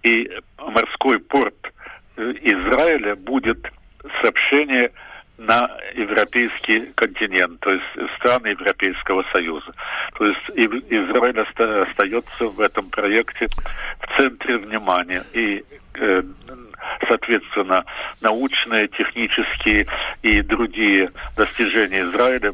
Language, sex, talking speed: English, male, 90 wpm